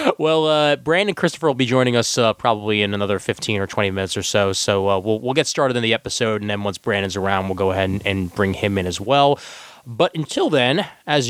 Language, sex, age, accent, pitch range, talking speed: English, male, 20-39, American, 100-140 Hz, 245 wpm